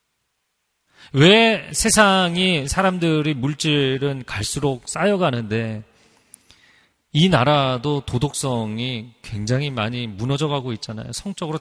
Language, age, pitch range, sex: Korean, 40-59, 115-155 Hz, male